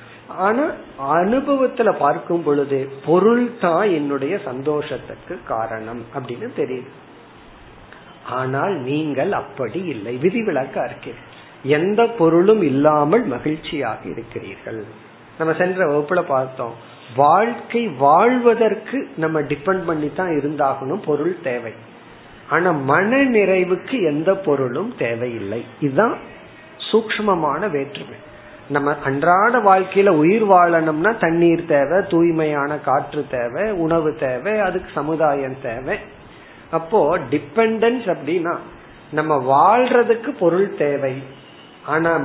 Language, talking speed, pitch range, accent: Tamil, 90 wpm, 140-195 Hz, native